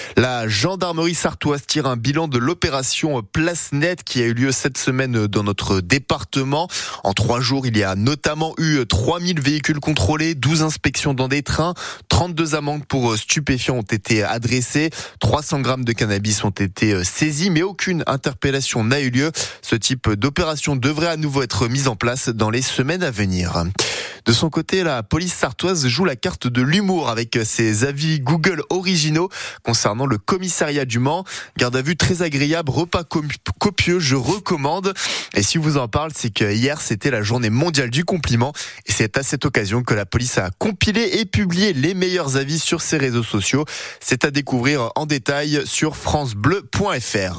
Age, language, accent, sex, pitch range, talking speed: 20-39, French, French, male, 120-160 Hz, 180 wpm